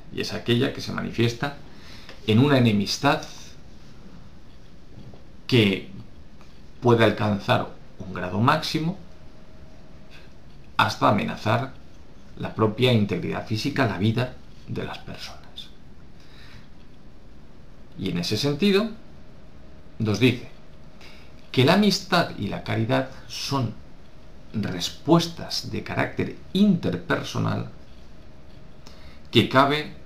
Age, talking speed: 50-69, 90 wpm